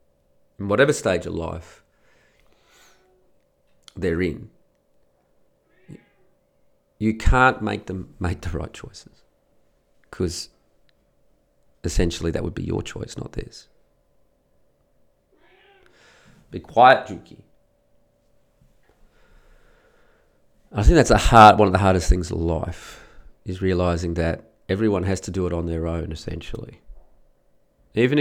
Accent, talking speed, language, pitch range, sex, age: Australian, 110 wpm, English, 65-100 Hz, male, 40-59